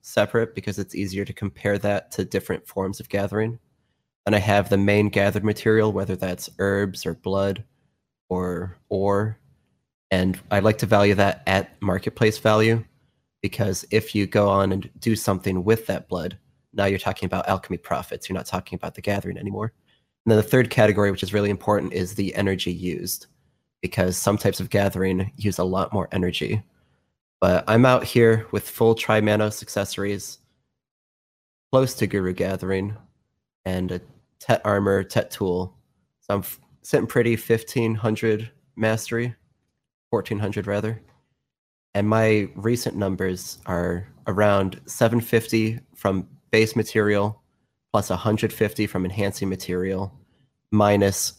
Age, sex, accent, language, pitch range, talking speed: 30-49, male, American, English, 95-110 Hz, 145 wpm